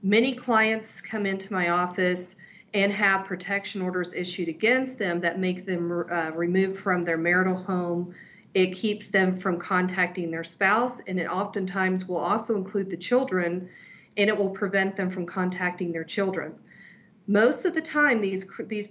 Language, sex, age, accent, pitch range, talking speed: English, female, 40-59, American, 175-200 Hz, 165 wpm